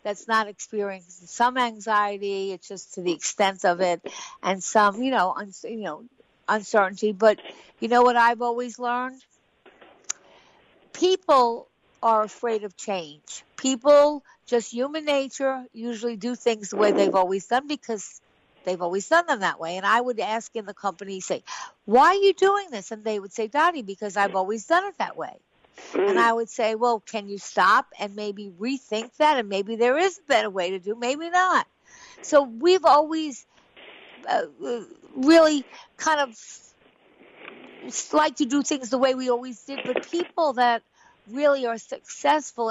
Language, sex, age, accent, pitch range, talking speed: English, female, 60-79, American, 205-280 Hz, 165 wpm